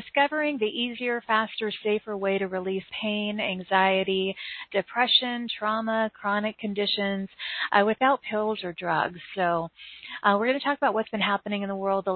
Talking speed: 165 wpm